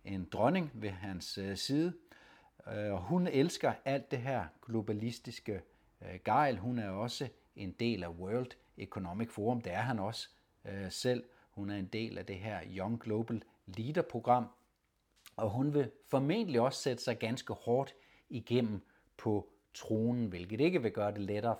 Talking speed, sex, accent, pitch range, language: 155 wpm, male, native, 100-120 Hz, Danish